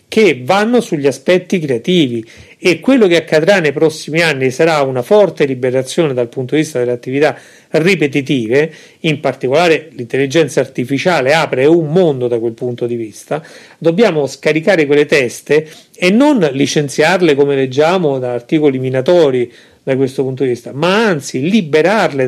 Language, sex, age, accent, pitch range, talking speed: Italian, male, 40-59, native, 140-185 Hz, 150 wpm